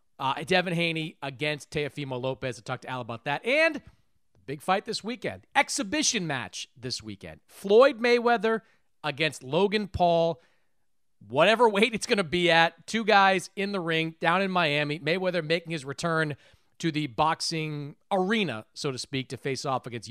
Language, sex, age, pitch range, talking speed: English, male, 30-49, 130-205 Hz, 165 wpm